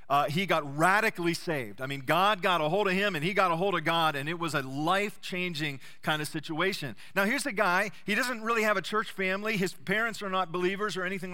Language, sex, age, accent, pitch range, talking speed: English, male, 40-59, American, 155-200 Hz, 245 wpm